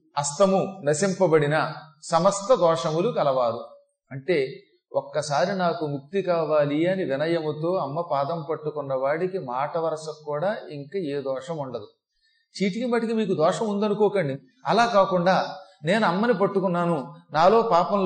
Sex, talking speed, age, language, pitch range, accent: male, 115 wpm, 40-59, Telugu, 170-225 Hz, native